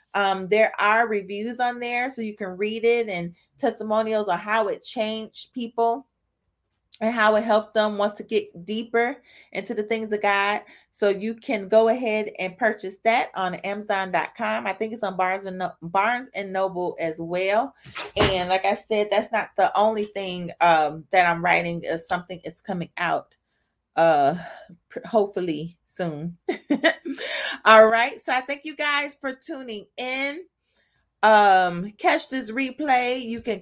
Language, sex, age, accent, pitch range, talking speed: English, female, 30-49, American, 190-235 Hz, 160 wpm